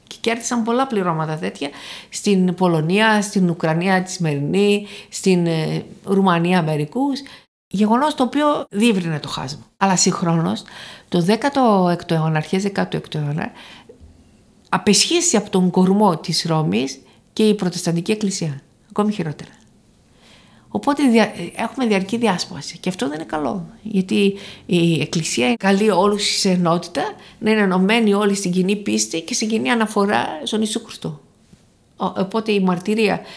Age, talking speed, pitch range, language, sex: 50-69, 130 wpm, 170-215 Hz, Greek, female